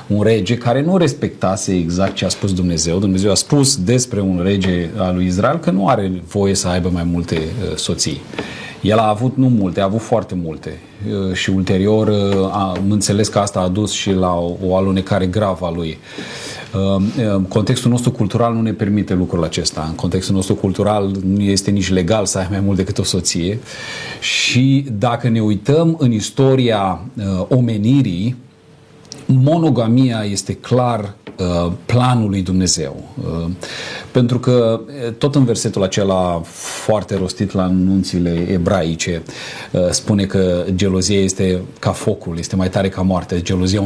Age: 40-59